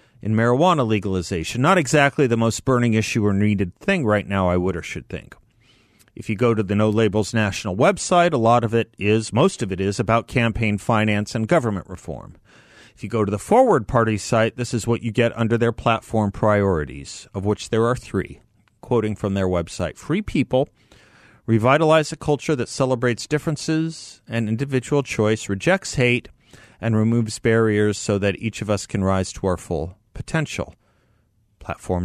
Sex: male